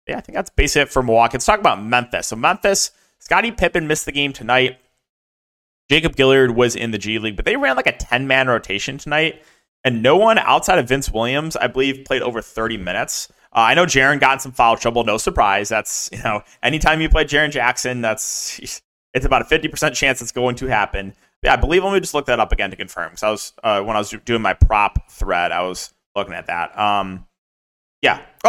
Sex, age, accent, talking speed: male, 20-39, American, 225 wpm